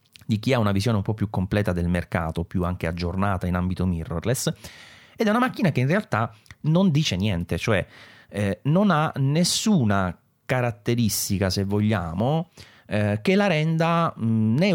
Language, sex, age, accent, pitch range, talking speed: English, male, 30-49, Italian, 95-125 Hz, 160 wpm